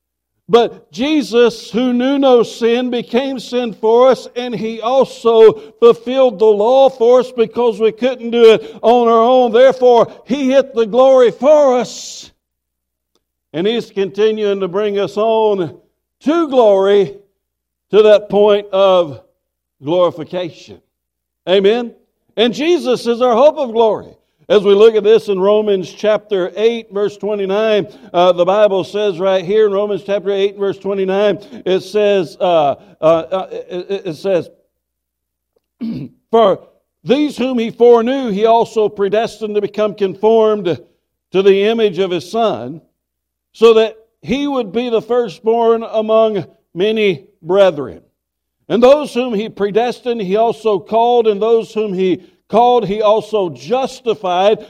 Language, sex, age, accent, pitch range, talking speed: English, male, 60-79, American, 195-235 Hz, 140 wpm